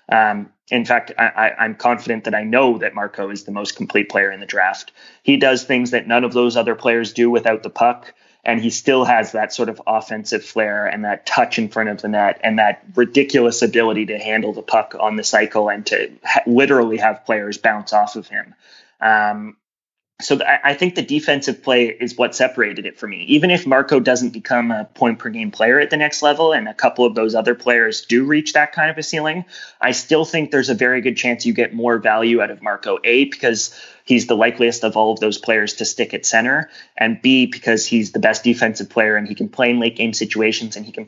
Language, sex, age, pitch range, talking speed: English, male, 20-39, 110-130 Hz, 225 wpm